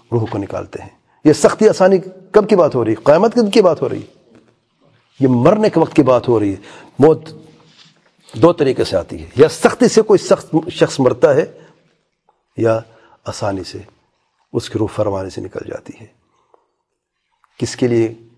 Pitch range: 115-150 Hz